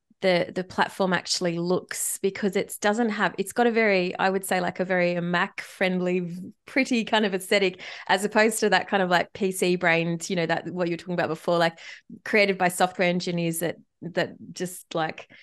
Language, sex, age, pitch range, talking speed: English, female, 20-39, 175-210 Hz, 200 wpm